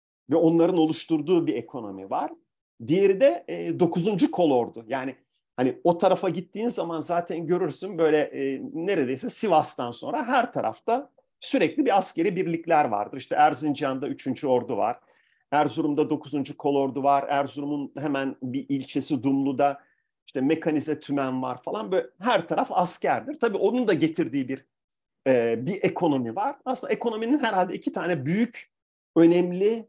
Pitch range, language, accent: 140-225 Hz, Turkish, native